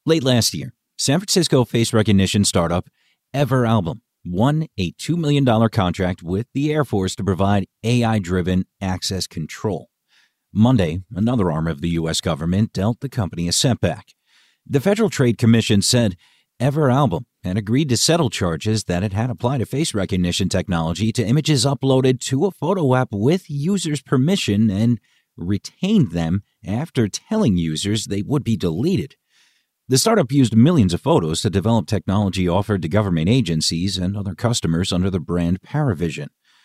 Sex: male